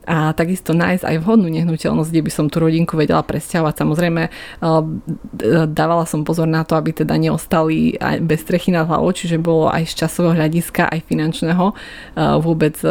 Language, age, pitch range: Slovak, 20-39, 155-170 Hz